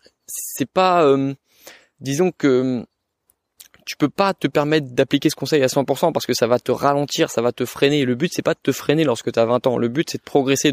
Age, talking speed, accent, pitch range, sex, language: 20-39, 230 wpm, French, 125-160 Hz, male, French